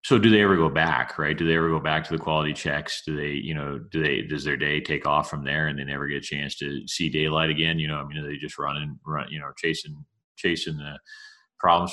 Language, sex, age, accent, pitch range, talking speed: English, male, 40-59, American, 75-95 Hz, 275 wpm